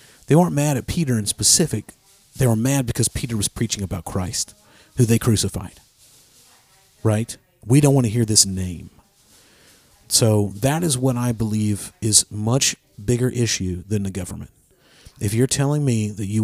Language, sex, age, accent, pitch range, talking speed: English, male, 40-59, American, 100-125 Hz, 170 wpm